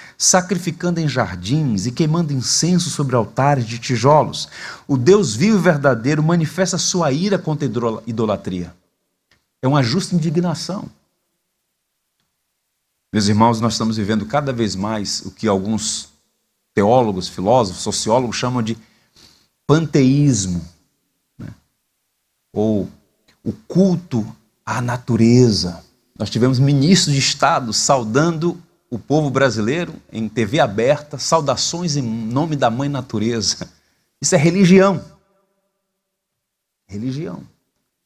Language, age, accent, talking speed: Portuguese, 40-59, Brazilian, 110 wpm